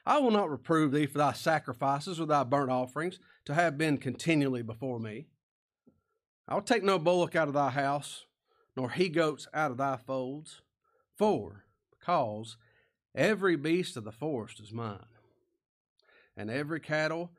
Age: 40-59